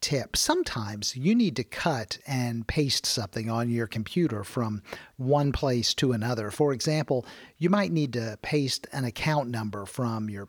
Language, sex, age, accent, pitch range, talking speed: English, male, 50-69, American, 120-155 Hz, 160 wpm